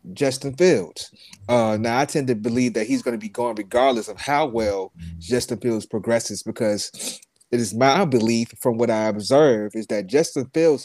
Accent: American